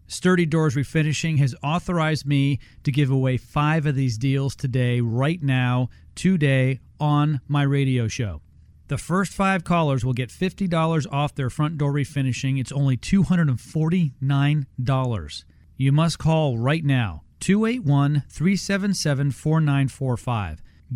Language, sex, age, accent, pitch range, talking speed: English, male, 40-59, American, 125-165 Hz, 120 wpm